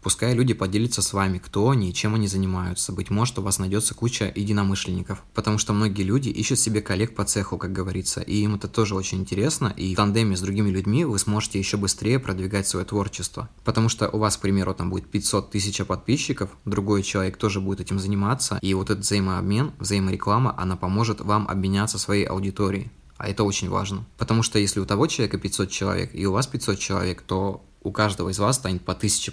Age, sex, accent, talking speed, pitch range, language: 20-39, male, native, 205 wpm, 95-110 Hz, Russian